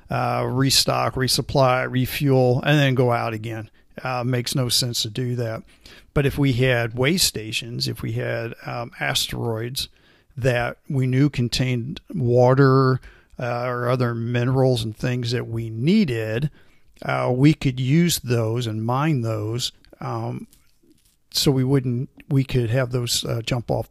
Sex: male